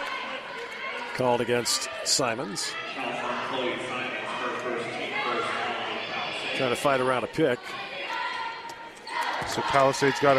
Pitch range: 155-195 Hz